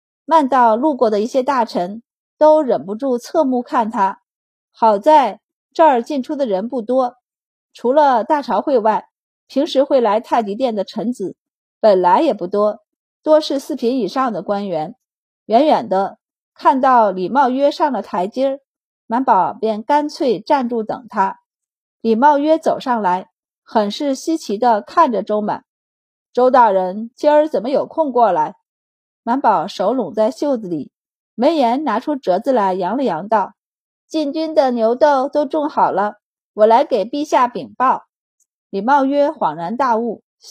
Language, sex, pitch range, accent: Chinese, female, 220-300 Hz, native